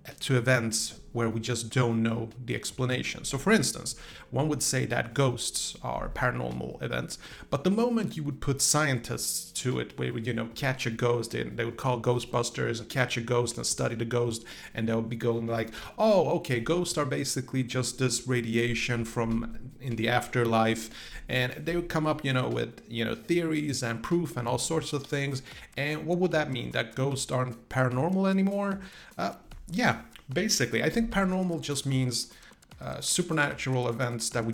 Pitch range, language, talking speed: 120-150 Hz, English, 185 wpm